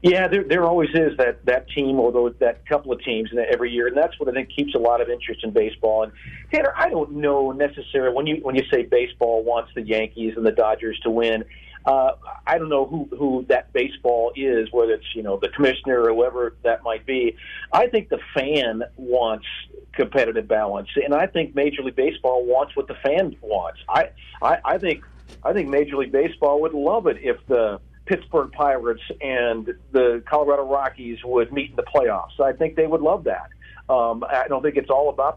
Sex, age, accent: male, 50-69, American